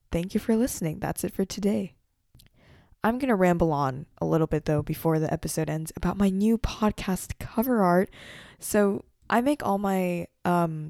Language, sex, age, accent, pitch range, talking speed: English, female, 10-29, American, 160-190 Hz, 180 wpm